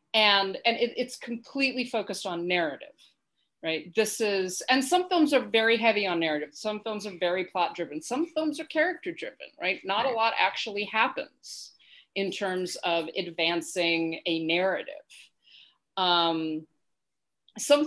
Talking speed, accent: 145 wpm, American